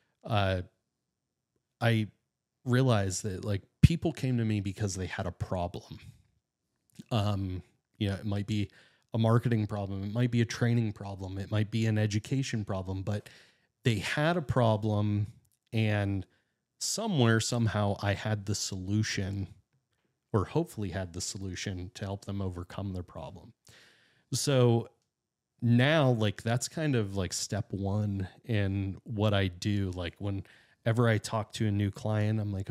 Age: 30-49